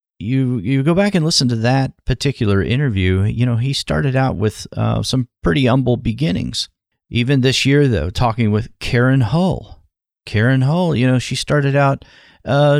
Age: 40-59